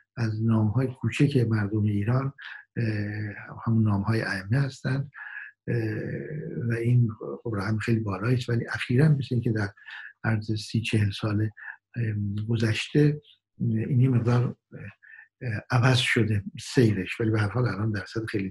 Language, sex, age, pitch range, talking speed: Persian, male, 60-79, 105-125 Hz, 125 wpm